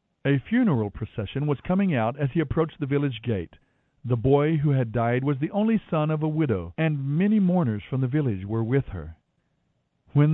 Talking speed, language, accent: 195 wpm, English, American